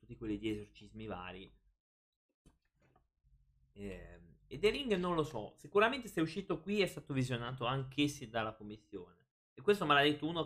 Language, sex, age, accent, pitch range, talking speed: Italian, male, 20-39, native, 105-145 Hz, 160 wpm